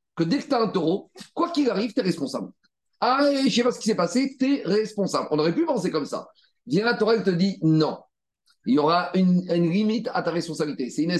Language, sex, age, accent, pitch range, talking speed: French, male, 40-59, French, 175-225 Hz, 270 wpm